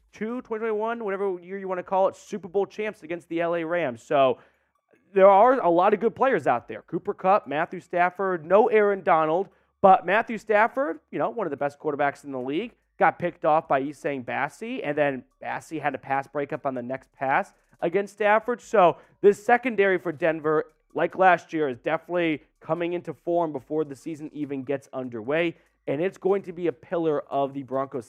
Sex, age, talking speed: male, 30-49, 195 wpm